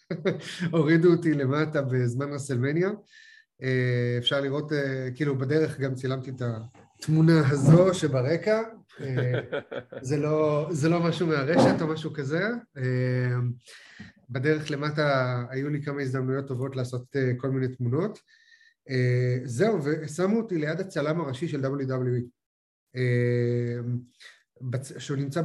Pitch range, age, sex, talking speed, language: 130-160 Hz, 30-49, male, 90 wpm, English